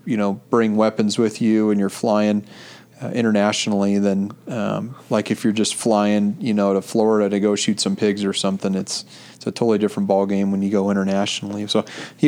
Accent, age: American, 30-49